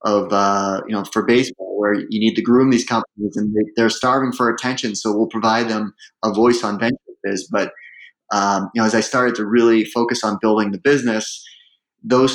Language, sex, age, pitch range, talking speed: English, male, 30-49, 105-125 Hz, 200 wpm